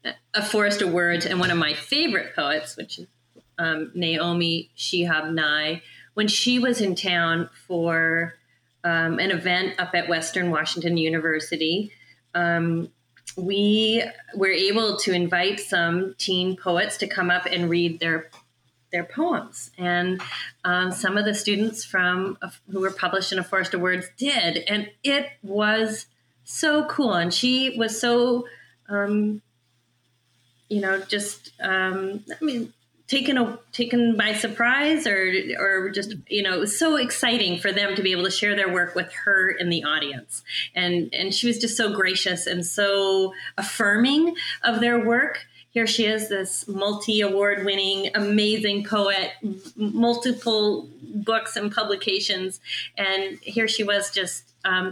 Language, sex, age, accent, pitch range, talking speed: English, female, 30-49, American, 175-210 Hz, 155 wpm